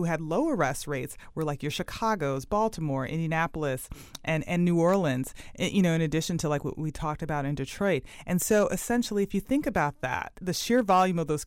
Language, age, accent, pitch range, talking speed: English, 30-49, American, 150-190 Hz, 210 wpm